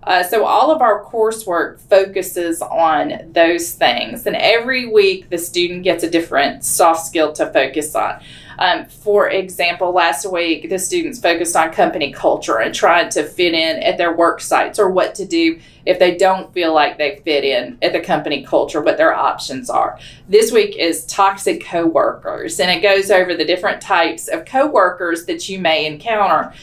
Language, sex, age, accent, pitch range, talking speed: English, female, 30-49, American, 175-230 Hz, 185 wpm